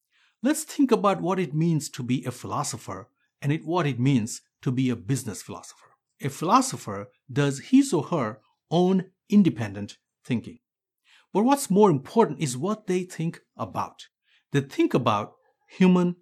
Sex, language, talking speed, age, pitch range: male, English, 155 wpm, 60-79, 125-195 Hz